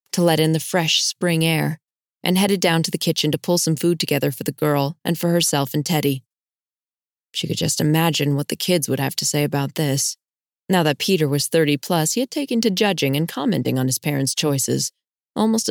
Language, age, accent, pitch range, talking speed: English, 20-39, American, 145-175 Hz, 220 wpm